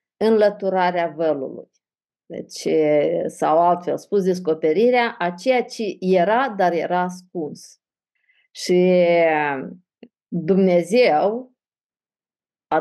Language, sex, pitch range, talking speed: Romanian, female, 175-220 Hz, 80 wpm